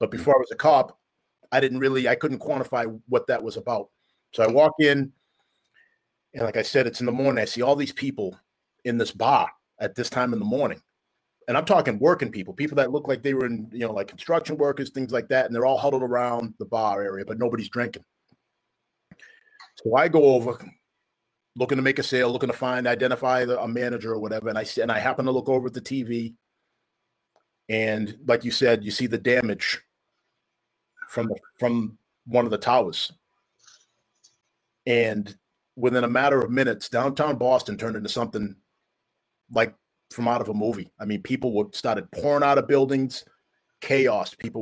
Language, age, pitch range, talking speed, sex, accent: English, 30-49, 115-135 Hz, 190 wpm, male, American